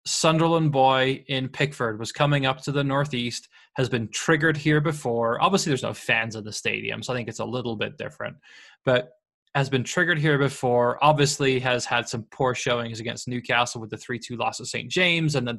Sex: male